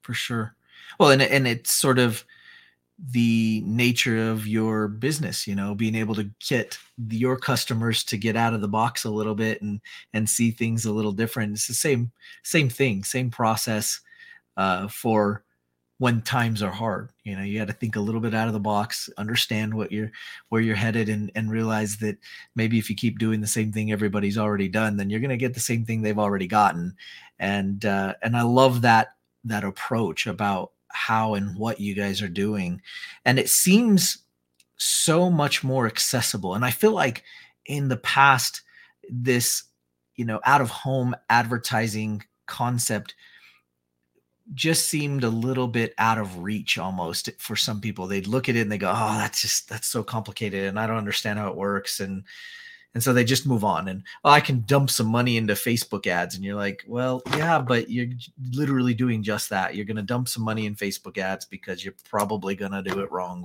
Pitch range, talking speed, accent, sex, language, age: 105-125 Hz, 200 wpm, American, male, English, 30-49